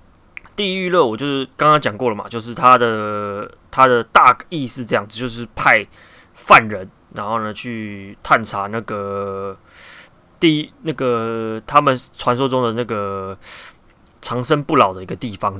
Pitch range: 105-135 Hz